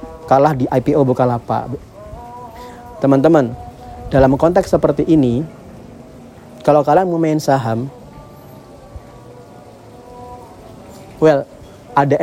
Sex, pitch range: male, 120-145 Hz